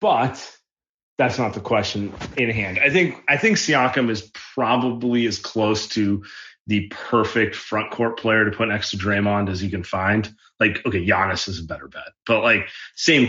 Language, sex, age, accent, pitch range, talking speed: English, male, 30-49, American, 105-125 Hz, 185 wpm